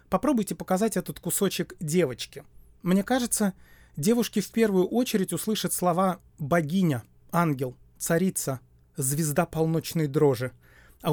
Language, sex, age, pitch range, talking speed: Russian, male, 30-49, 150-190 Hz, 110 wpm